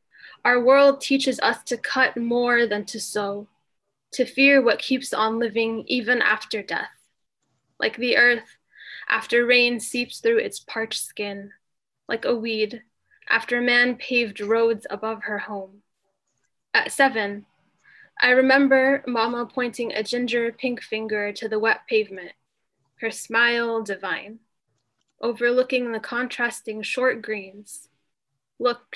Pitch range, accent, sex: 210-245 Hz, American, female